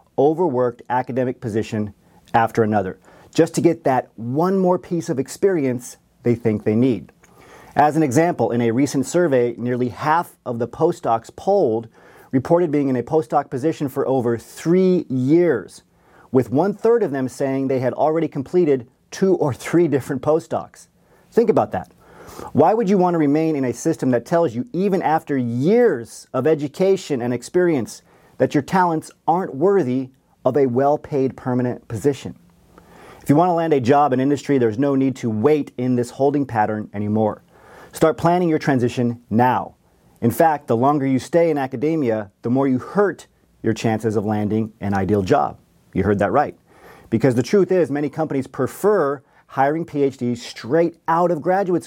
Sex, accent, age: male, American, 40-59